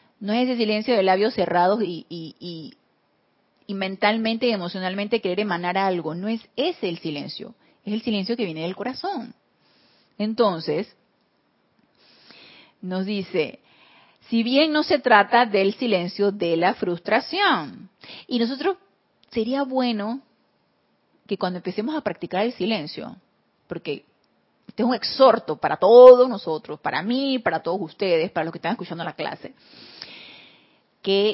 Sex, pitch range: female, 185-250 Hz